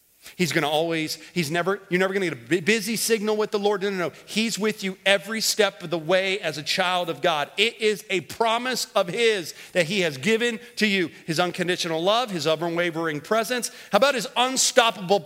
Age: 40-59